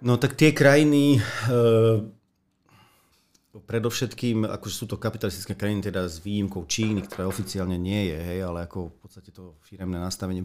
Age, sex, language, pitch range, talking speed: 40-59, male, Slovak, 95-110 Hz, 155 wpm